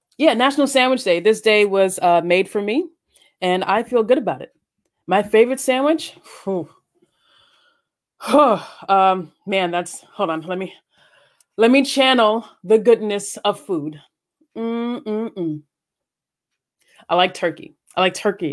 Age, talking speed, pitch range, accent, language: 20-39, 135 wpm, 180-240 Hz, American, English